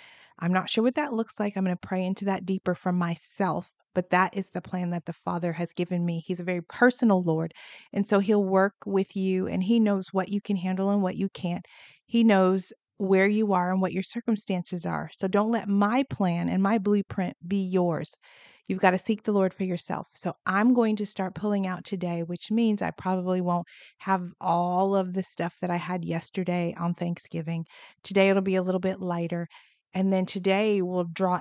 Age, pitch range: 30-49, 180-200 Hz